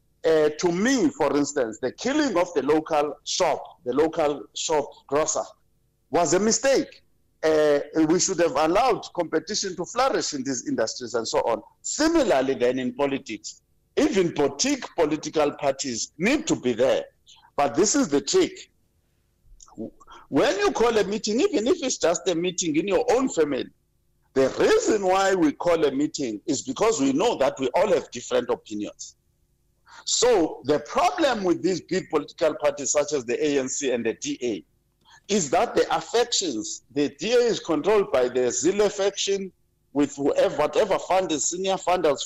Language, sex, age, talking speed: English, male, 50-69, 165 wpm